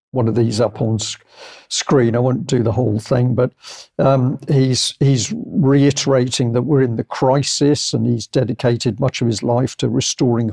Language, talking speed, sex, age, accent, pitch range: English, 180 wpm, male, 50-69, British, 120-140 Hz